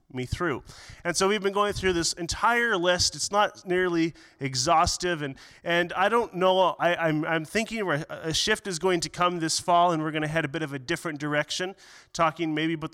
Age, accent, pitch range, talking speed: 30-49, American, 140-175 Hz, 215 wpm